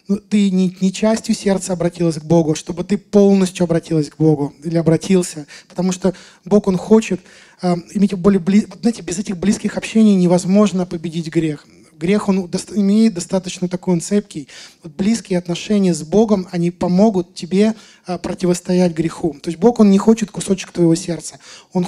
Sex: male